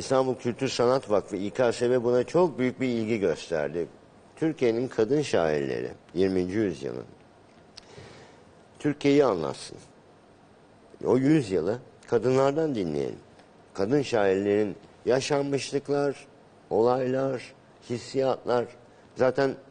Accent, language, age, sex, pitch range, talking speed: native, Turkish, 50-69, male, 95-130 Hz, 85 wpm